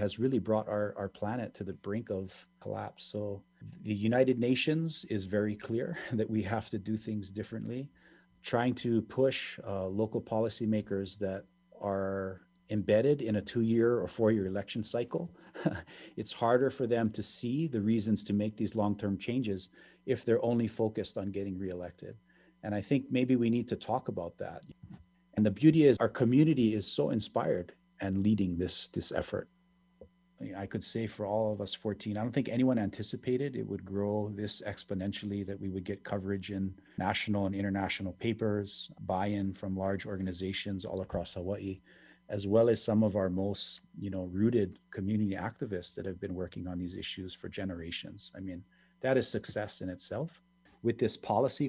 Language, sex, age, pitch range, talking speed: English, male, 40-59, 95-115 Hz, 175 wpm